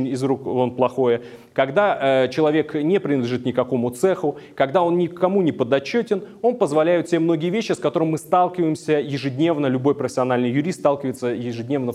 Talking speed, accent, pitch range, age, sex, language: 155 wpm, native, 125-170 Hz, 30-49, male, Russian